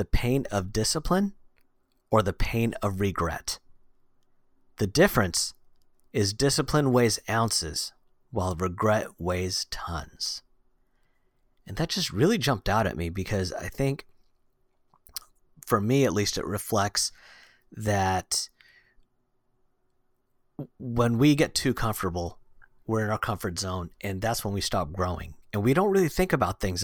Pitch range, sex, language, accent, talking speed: 95-125 Hz, male, English, American, 135 wpm